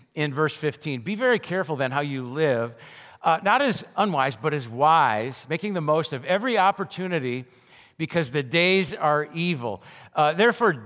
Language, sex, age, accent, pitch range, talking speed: English, male, 50-69, American, 145-195 Hz, 165 wpm